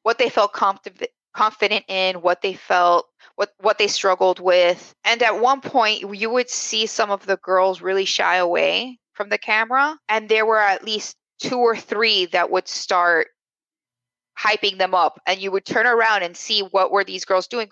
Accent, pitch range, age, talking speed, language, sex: American, 185-255 Hz, 20-39, 190 wpm, English, female